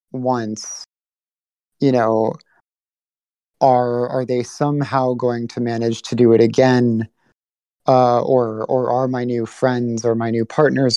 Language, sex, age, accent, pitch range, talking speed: English, male, 30-49, American, 115-135 Hz, 135 wpm